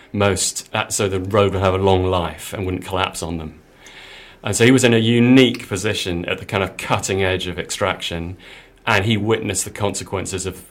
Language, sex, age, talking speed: English, male, 30-49, 200 wpm